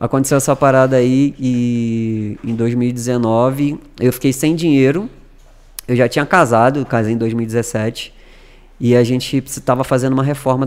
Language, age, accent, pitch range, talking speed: Portuguese, 20-39, Brazilian, 120-155 Hz, 140 wpm